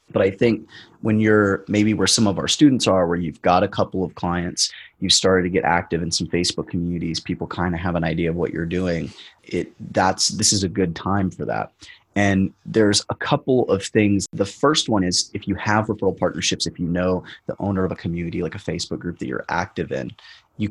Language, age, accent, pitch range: English, 30-49, American, 85-100 Hz